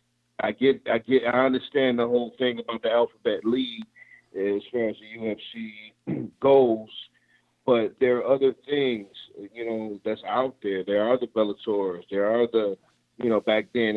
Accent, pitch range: American, 105-125 Hz